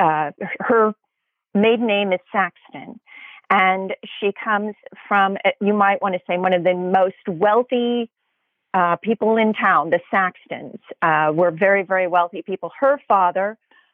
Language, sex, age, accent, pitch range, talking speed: English, female, 40-59, American, 175-210 Hz, 145 wpm